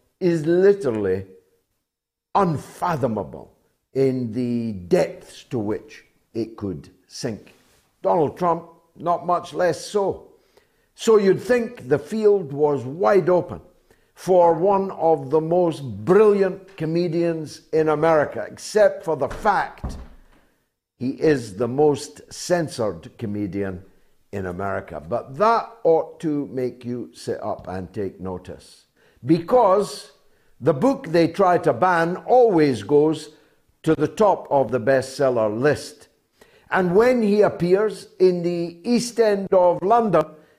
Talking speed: 125 wpm